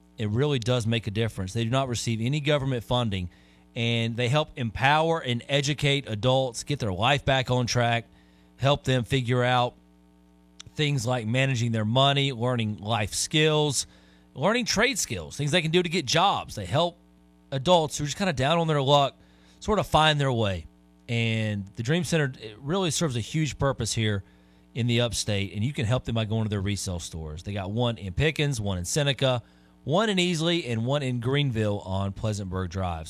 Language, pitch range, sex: English, 100-135 Hz, male